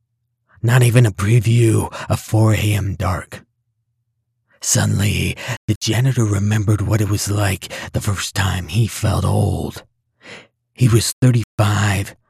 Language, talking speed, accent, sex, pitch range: English, 120 wpm, American, male, 105-120 Hz